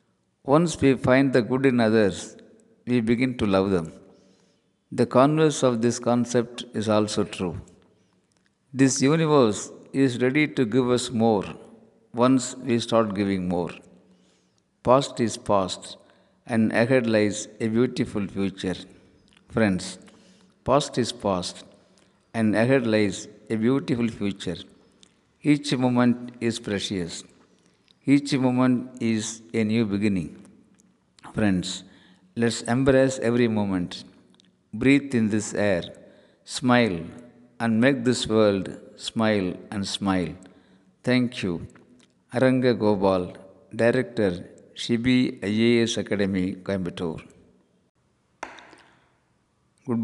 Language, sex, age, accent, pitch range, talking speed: Tamil, male, 50-69, native, 100-130 Hz, 105 wpm